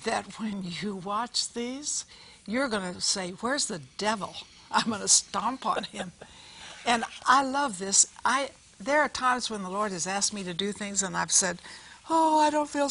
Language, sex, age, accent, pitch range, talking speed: English, female, 60-79, American, 185-255 Hz, 195 wpm